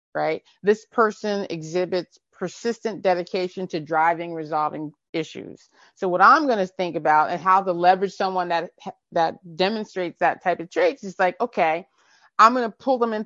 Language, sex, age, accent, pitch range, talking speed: English, female, 30-49, American, 170-205 Hz, 170 wpm